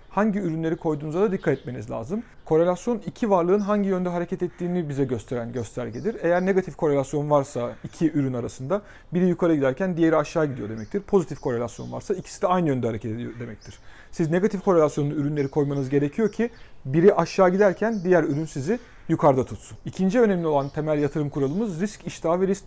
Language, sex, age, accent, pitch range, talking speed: Turkish, male, 40-59, native, 145-190 Hz, 175 wpm